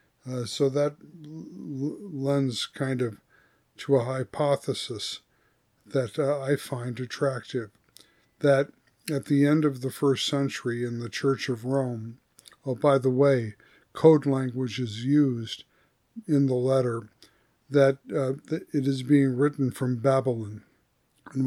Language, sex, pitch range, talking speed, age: English, male, 125-140 Hz, 130 wpm, 60-79